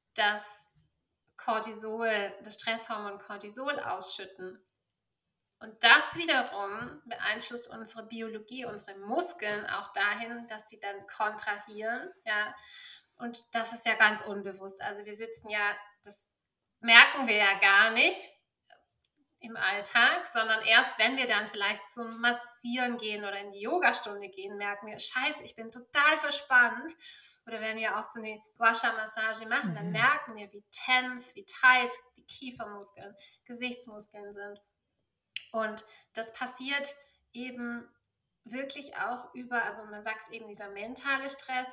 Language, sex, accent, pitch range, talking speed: German, female, German, 205-245 Hz, 135 wpm